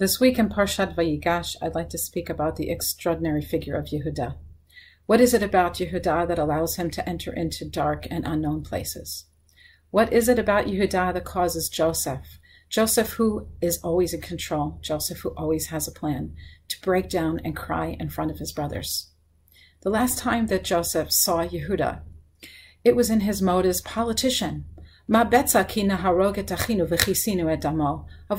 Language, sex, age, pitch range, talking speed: English, female, 40-59, 150-210 Hz, 160 wpm